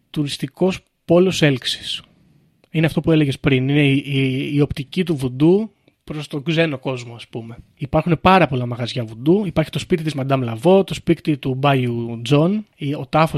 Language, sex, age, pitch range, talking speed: Greek, male, 30-49, 135-170 Hz, 175 wpm